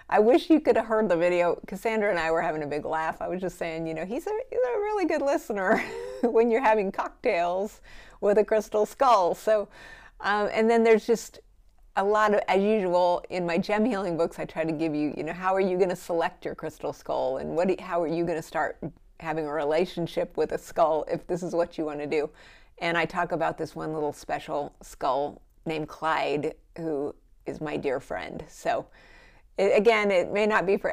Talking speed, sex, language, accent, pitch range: 215 wpm, female, English, American, 160-215 Hz